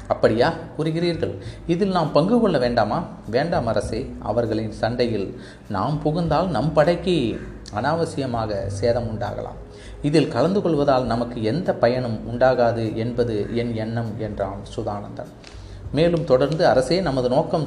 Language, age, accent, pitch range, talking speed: Tamil, 30-49, native, 105-145 Hz, 120 wpm